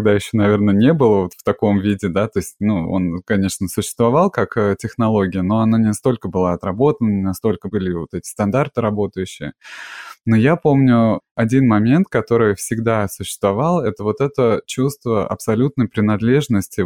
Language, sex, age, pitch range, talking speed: Russian, male, 20-39, 105-125 Hz, 160 wpm